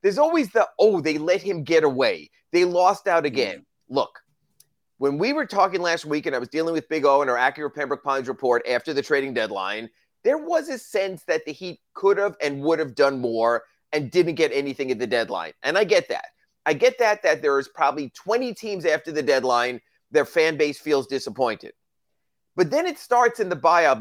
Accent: American